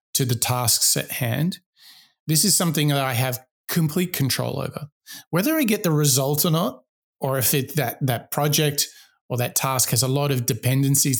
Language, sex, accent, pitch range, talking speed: English, male, Australian, 130-155 Hz, 180 wpm